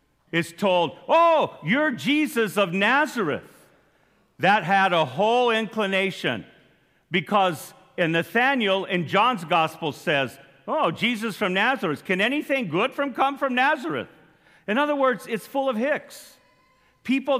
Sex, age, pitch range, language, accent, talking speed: male, 50-69, 170-265 Hz, English, American, 130 wpm